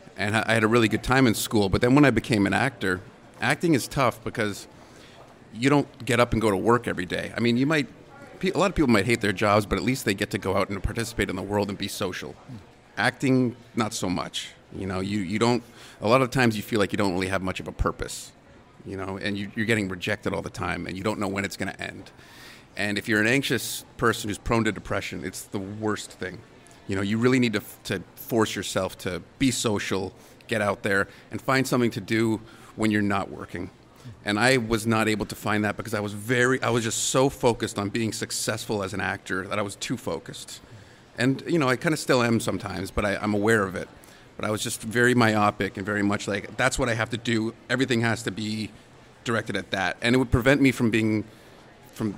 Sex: male